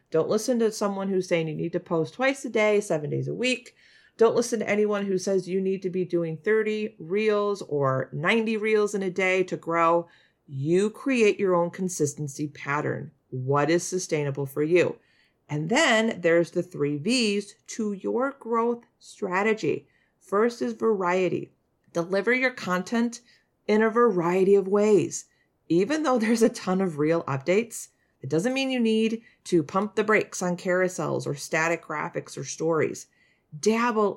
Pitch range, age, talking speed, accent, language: 170-225 Hz, 40-59, 165 wpm, American, English